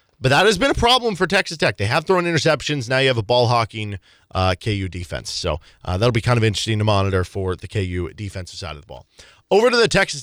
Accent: American